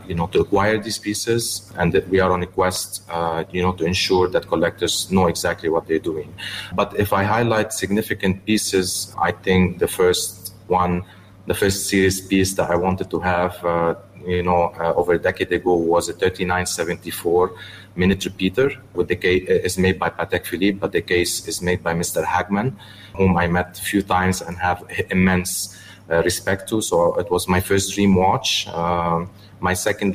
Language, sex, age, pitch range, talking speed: English, male, 30-49, 85-100 Hz, 195 wpm